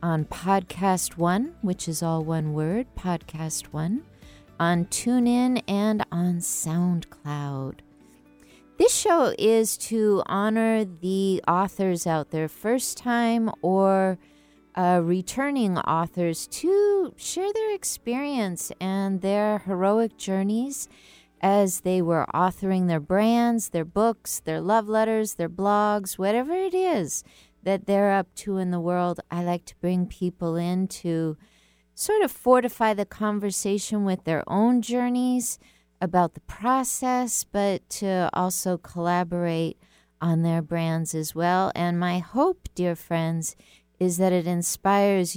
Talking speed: 130 wpm